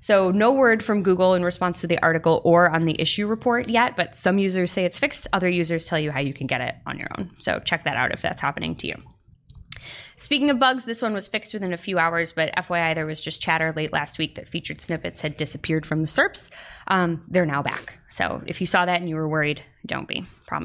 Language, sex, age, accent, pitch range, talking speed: English, female, 20-39, American, 170-235 Hz, 255 wpm